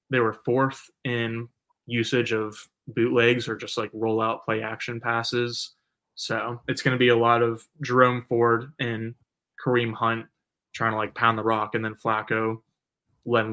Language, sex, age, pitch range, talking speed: English, male, 20-39, 115-130 Hz, 165 wpm